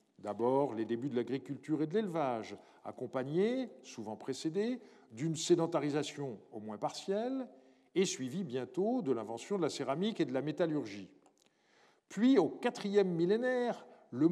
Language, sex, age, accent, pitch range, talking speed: French, male, 50-69, French, 140-220 Hz, 140 wpm